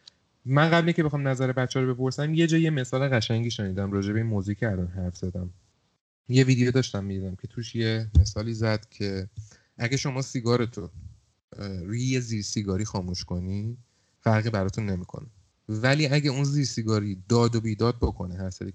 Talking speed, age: 170 wpm, 30-49